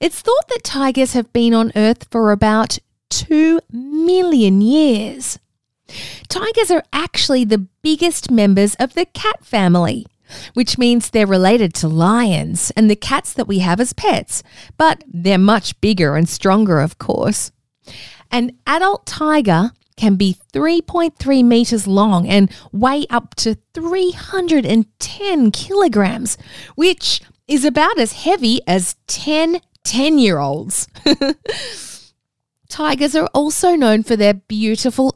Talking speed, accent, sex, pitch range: 130 wpm, Australian, female, 195-295 Hz